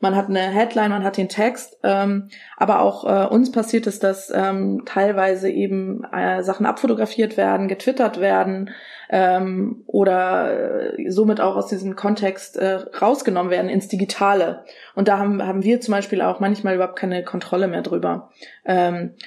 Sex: female